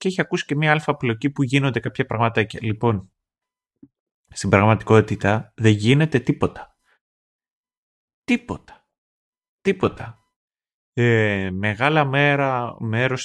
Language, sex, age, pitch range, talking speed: Greek, male, 30-49, 95-135 Hz, 100 wpm